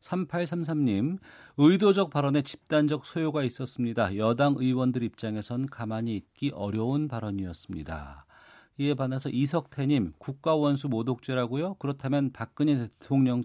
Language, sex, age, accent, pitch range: Korean, male, 40-59, native, 110-145 Hz